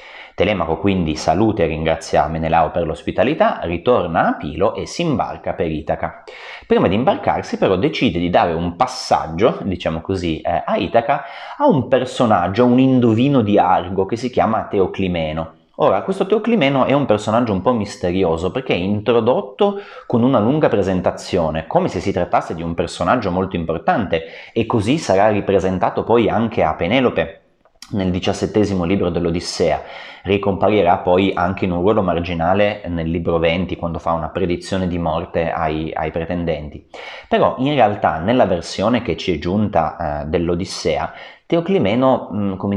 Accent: native